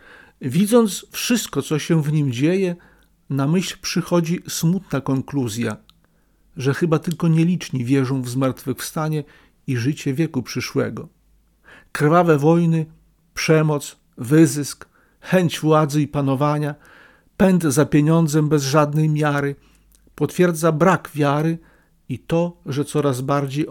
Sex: male